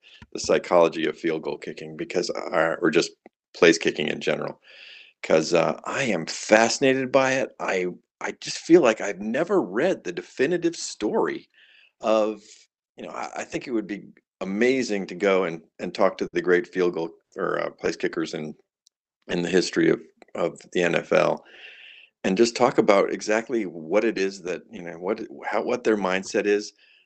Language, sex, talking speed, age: English, male, 175 wpm, 50-69